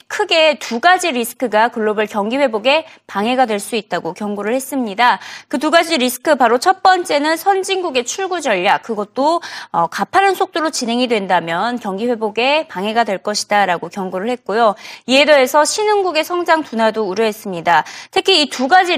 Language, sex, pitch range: Korean, female, 210-330 Hz